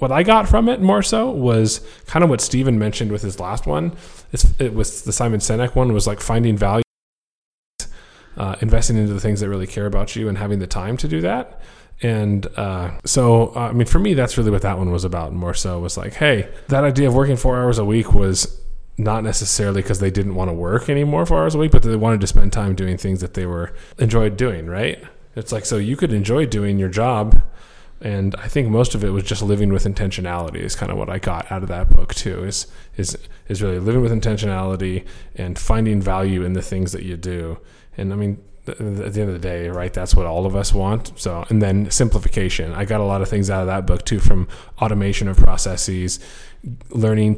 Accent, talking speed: American, 235 wpm